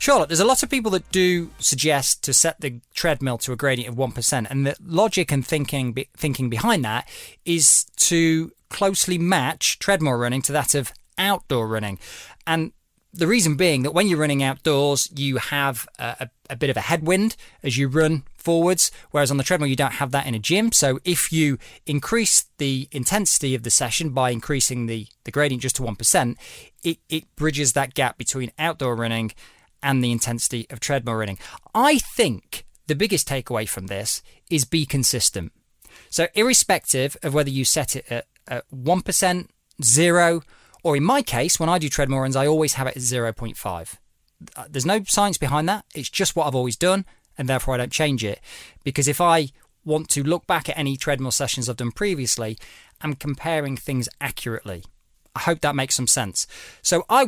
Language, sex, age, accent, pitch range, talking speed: English, male, 20-39, British, 125-165 Hz, 190 wpm